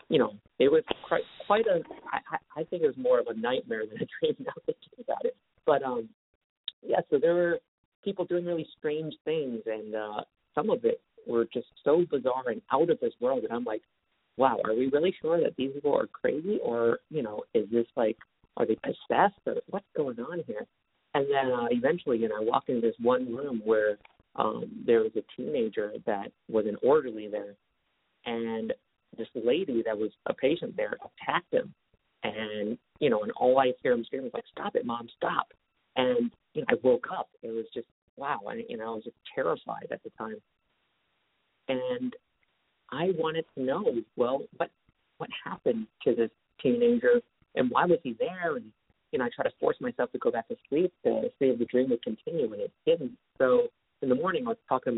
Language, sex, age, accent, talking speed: English, male, 40-59, American, 205 wpm